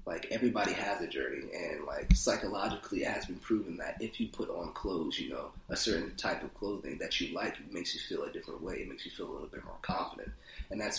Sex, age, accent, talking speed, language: male, 30-49, American, 250 wpm, English